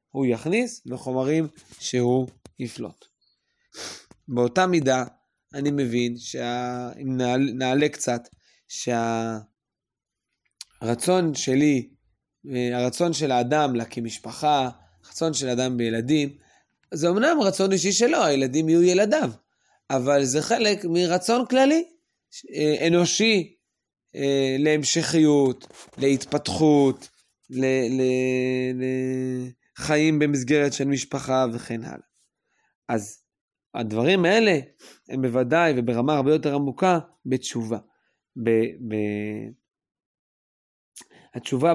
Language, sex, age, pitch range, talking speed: Hebrew, male, 20-39, 125-155 Hz, 90 wpm